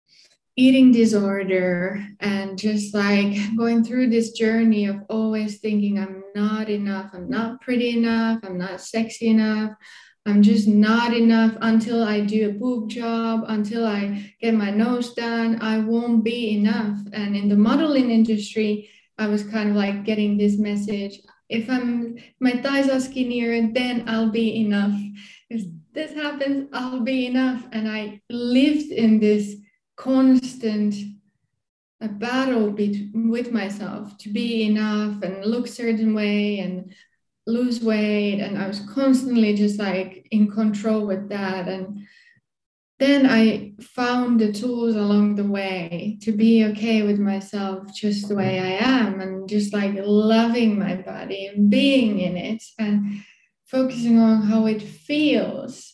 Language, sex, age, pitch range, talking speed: English, female, 20-39, 205-235 Hz, 145 wpm